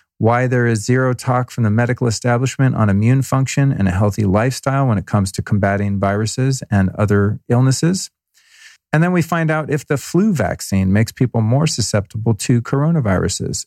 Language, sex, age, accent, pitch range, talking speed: English, male, 40-59, American, 105-135 Hz, 175 wpm